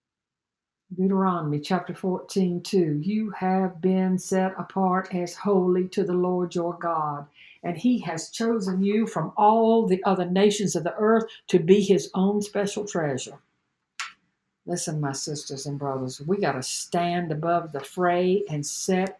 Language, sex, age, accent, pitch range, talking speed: English, female, 60-79, American, 175-225 Hz, 155 wpm